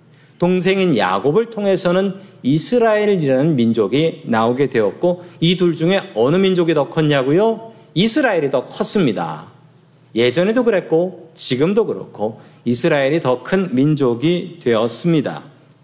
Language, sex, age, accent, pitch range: Korean, male, 40-59, native, 145-190 Hz